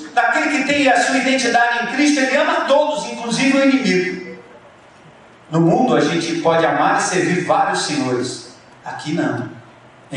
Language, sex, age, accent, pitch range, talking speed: Portuguese, male, 50-69, Brazilian, 140-180 Hz, 160 wpm